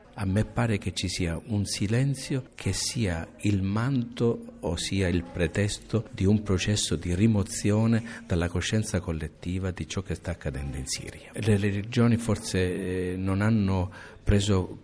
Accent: native